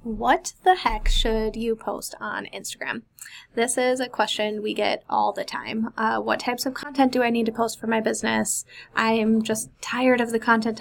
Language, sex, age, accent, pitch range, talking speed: English, female, 20-39, American, 210-240 Hz, 205 wpm